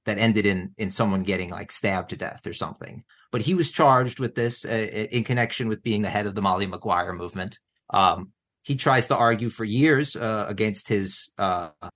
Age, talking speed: 30-49, 205 wpm